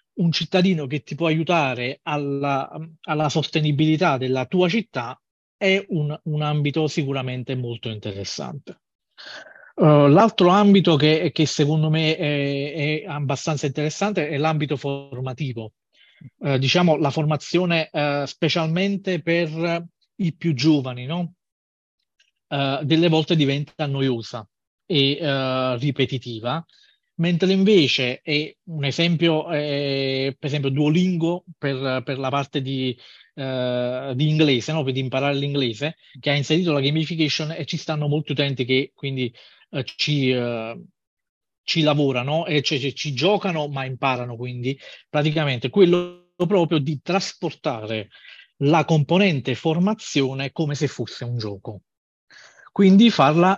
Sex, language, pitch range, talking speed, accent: male, Italian, 135-165 Hz, 130 wpm, native